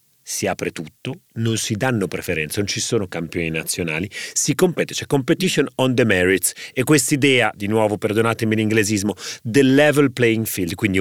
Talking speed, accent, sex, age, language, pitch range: 165 wpm, native, male, 40-59, Italian, 100-130 Hz